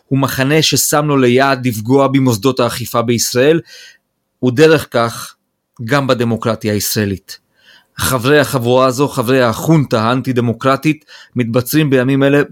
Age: 40-59